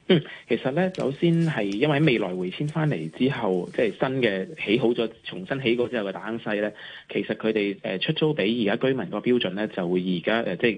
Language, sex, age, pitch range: Chinese, male, 20-39, 105-145 Hz